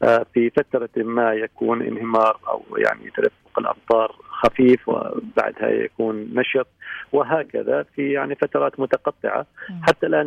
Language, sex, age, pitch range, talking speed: English, male, 40-59, 115-145 Hz, 115 wpm